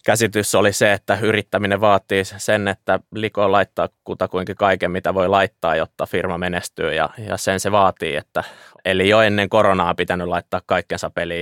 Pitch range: 90-105 Hz